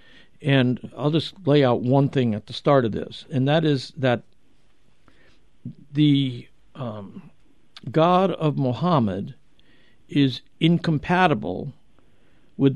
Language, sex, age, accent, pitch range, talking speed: English, male, 60-79, American, 120-165 Hz, 115 wpm